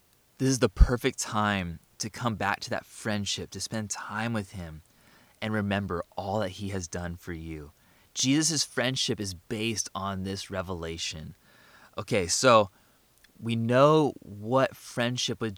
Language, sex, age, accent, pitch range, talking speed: English, male, 20-39, American, 95-120 Hz, 150 wpm